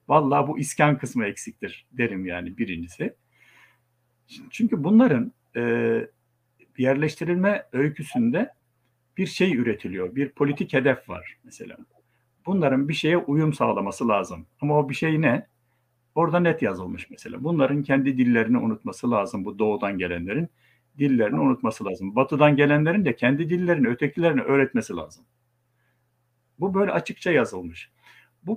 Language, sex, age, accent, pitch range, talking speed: Turkish, male, 60-79, native, 120-155 Hz, 125 wpm